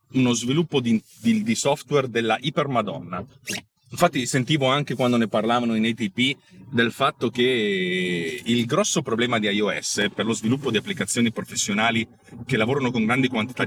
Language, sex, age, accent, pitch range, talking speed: Italian, male, 40-59, native, 125-195 Hz, 160 wpm